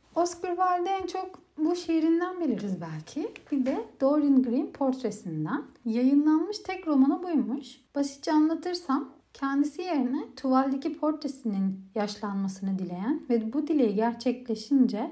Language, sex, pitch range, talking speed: Turkish, female, 205-280 Hz, 115 wpm